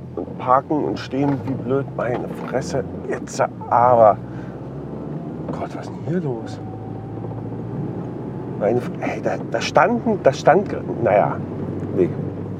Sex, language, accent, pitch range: male, German, German, 130-165 Hz